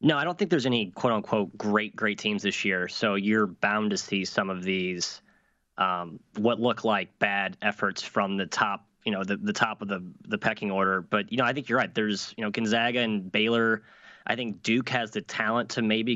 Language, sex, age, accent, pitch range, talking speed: English, male, 20-39, American, 100-115 Hz, 225 wpm